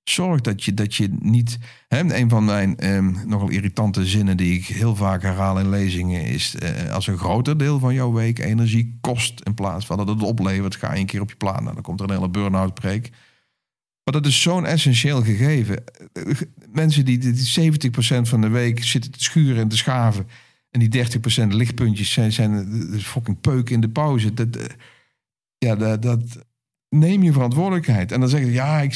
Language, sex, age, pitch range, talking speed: Dutch, male, 50-69, 100-130 Hz, 205 wpm